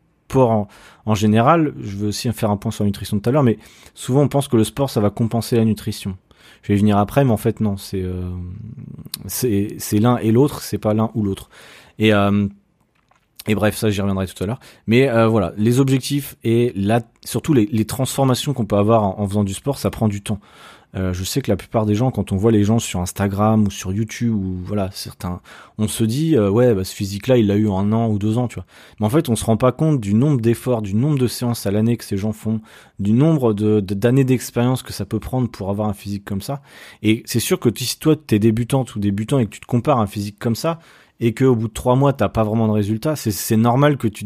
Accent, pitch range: French, 105-125 Hz